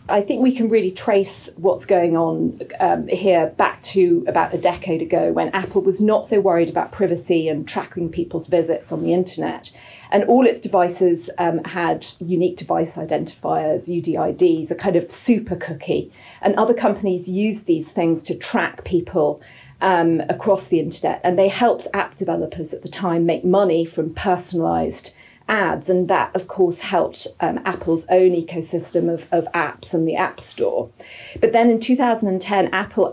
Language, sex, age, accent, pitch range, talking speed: English, female, 40-59, British, 165-195 Hz, 170 wpm